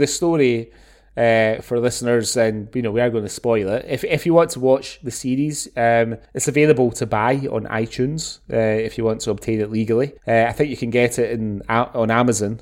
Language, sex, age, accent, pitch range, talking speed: English, male, 20-39, British, 110-125 Hz, 225 wpm